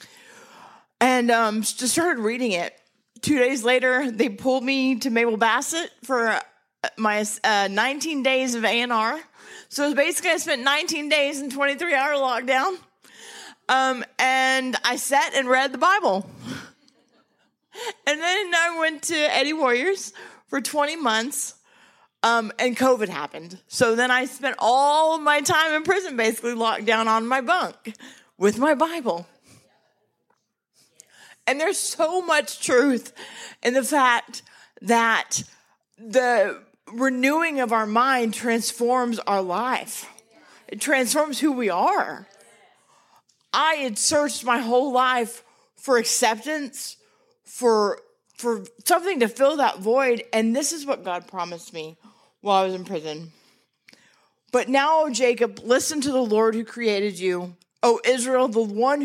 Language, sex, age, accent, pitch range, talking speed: English, female, 40-59, American, 225-290 Hz, 140 wpm